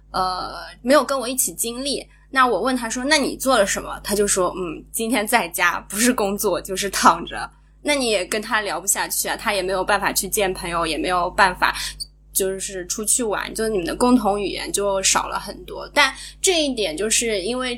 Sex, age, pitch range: female, 20-39, 195-250 Hz